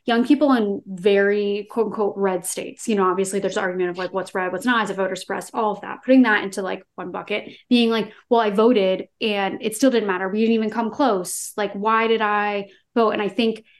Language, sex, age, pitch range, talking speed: English, female, 20-39, 195-225 Hz, 245 wpm